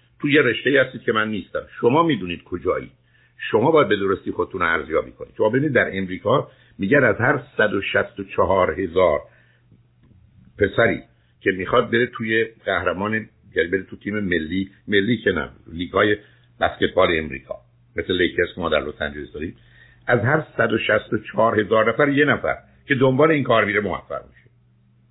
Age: 60-79